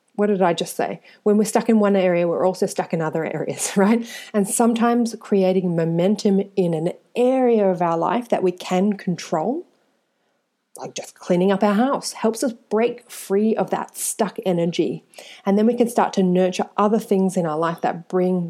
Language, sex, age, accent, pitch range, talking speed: English, female, 30-49, Australian, 180-220 Hz, 195 wpm